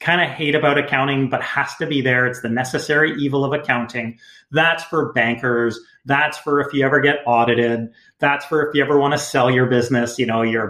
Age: 30-49